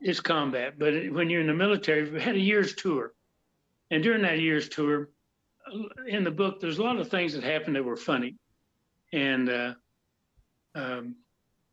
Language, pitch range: English, 140-175 Hz